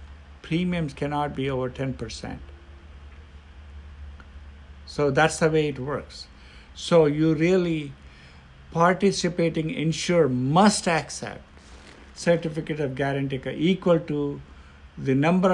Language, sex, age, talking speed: English, male, 60-79, 95 wpm